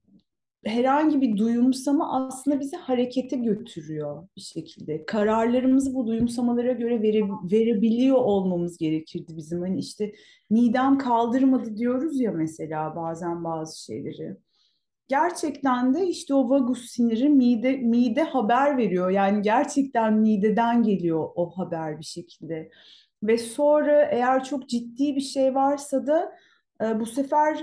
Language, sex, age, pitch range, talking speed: Turkish, female, 30-49, 215-275 Hz, 120 wpm